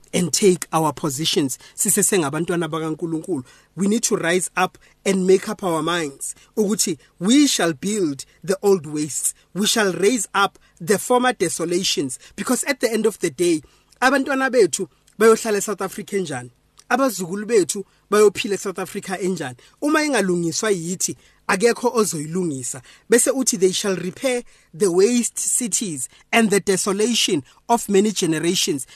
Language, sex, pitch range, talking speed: English, male, 175-235 Hz, 130 wpm